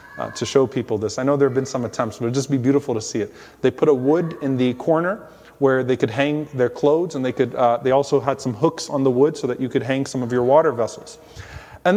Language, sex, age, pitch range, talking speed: English, male, 30-49, 140-175 Hz, 285 wpm